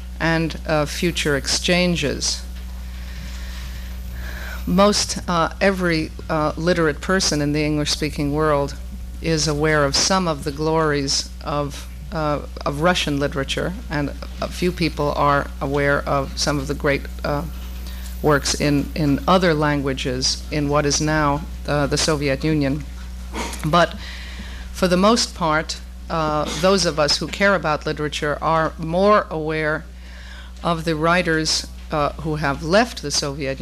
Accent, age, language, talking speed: American, 50-69, English, 135 wpm